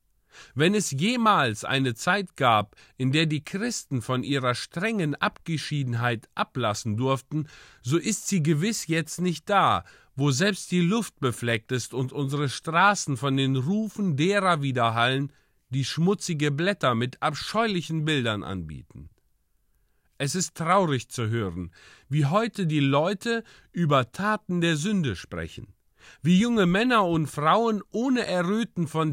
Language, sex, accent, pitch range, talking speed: German, male, German, 125-190 Hz, 135 wpm